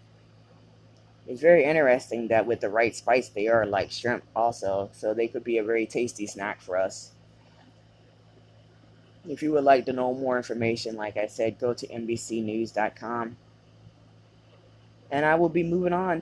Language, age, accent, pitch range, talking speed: English, 20-39, American, 115-135 Hz, 160 wpm